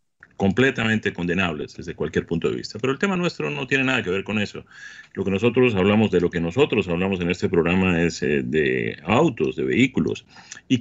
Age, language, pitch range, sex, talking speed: 40-59, Spanish, 95-125 Hz, male, 200 wpm